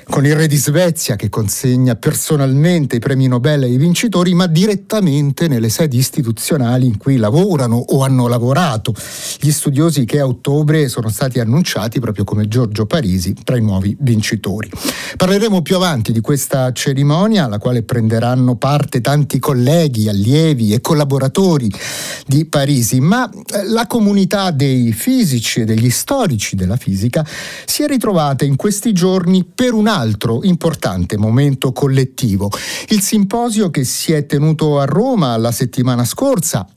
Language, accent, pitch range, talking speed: Italian, native, 125-180 Hz, 145 wpm